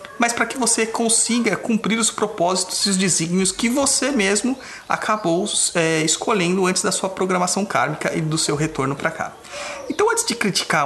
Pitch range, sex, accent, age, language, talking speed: 145-215 Hz, male, Brazilian, 30-49, Portuguese, 170 wpm